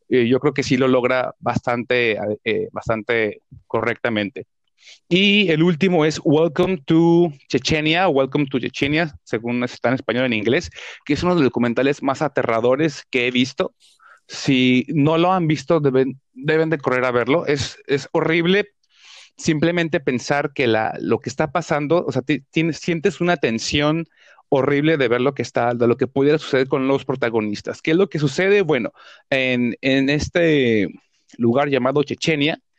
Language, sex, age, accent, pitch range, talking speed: Spanish, male, 30-49, Mexican, 125-160 Hz, 170 wpm